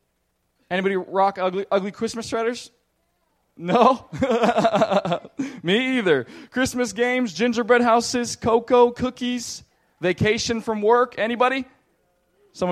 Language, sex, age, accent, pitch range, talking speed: English, male, 20-39, American, 125-195 Hz, 95 wpm